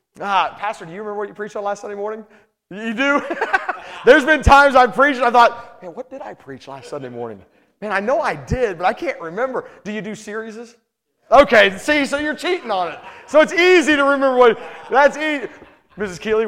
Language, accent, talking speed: English, American, 220 wpm